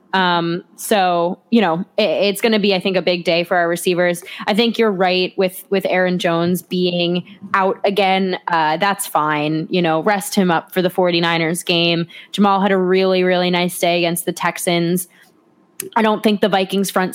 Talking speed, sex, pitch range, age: 195 wpm, female, 170-205 Hz, 10-29